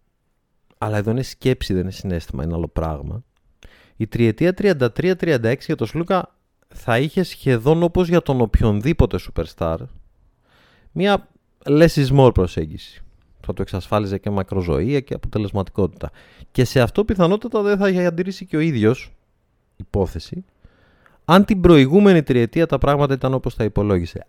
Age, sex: 30-49, male